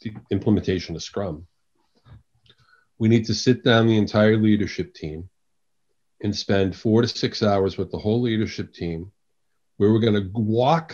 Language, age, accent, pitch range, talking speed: English, 40-59, American, 95-115 Hz, 160 wpm